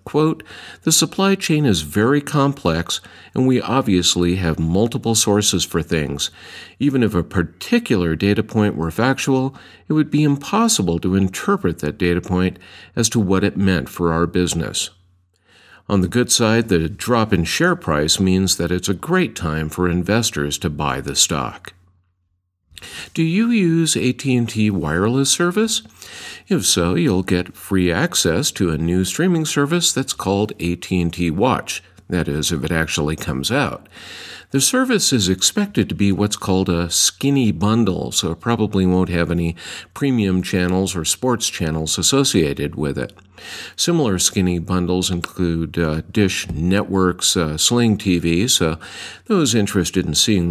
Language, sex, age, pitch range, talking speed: English, male, 50-69, 85-120 Hz, 155 wpm